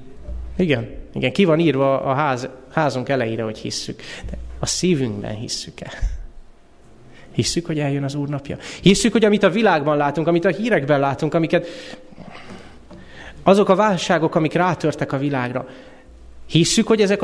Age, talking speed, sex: 30-49, 145 wpm, male